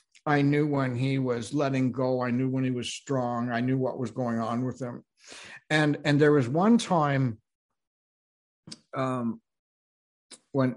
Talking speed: 160 wpm